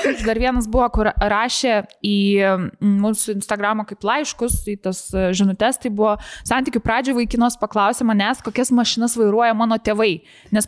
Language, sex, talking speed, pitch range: English, female, 145 wpm, 205-240 Hz